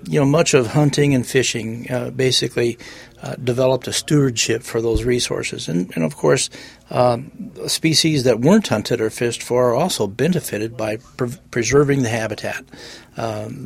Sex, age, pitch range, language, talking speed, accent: male, 40-59, 120-145 Hz, English, 160 wpm, American